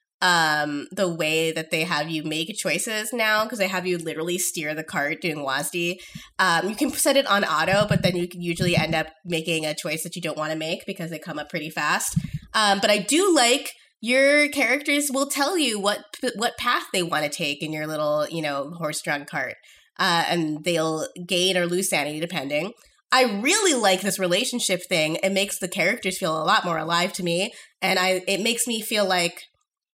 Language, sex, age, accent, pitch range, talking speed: English, female, 20-39, American, 165-220 Hz, 215 wpm